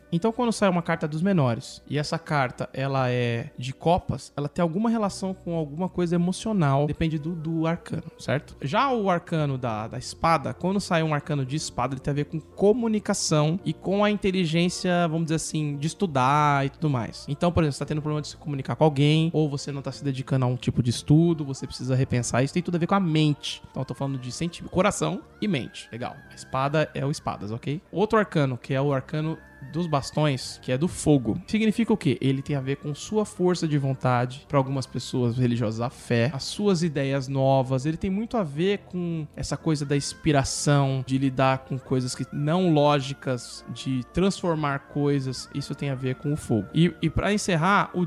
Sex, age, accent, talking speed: male, 20-39, Brazilian, 215 wpm